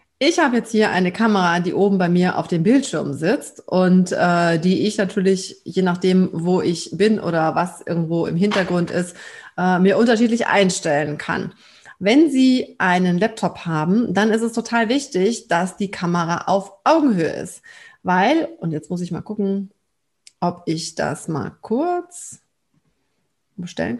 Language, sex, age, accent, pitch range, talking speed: German, female, 30-49, German, 180-230 Hz, 160 wpm